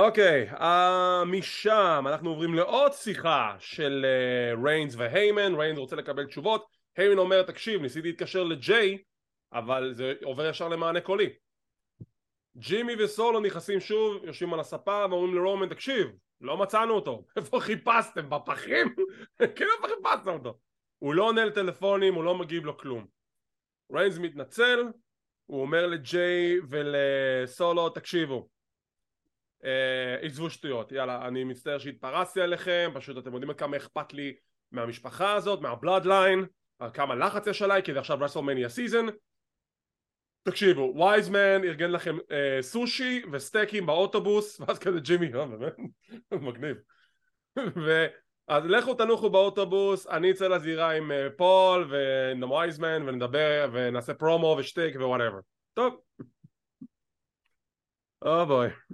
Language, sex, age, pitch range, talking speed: English, male, 20-39, 140-200 Hz, 110 wpm